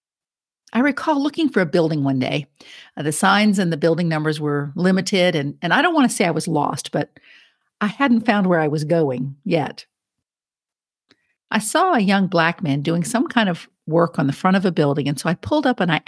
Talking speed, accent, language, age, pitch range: 220 wpm, American, English, 50-69, 160-220 Hz